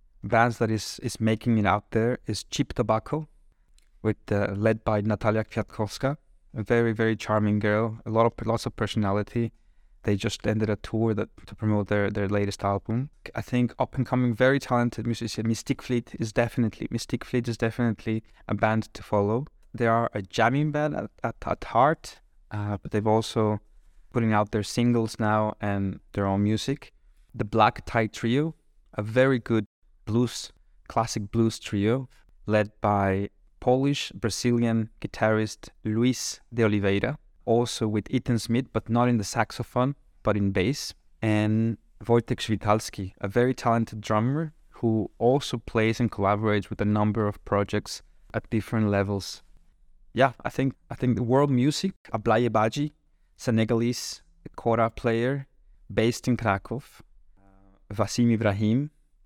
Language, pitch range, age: English, 105-120 Hz, 20-39